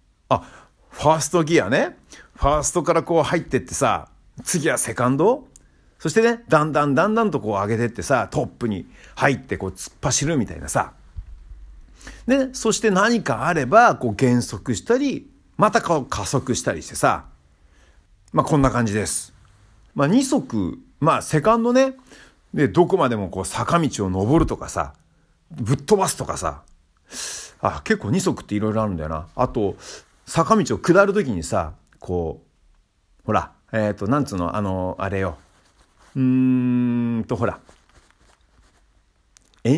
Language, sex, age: Japanese, male, 50-69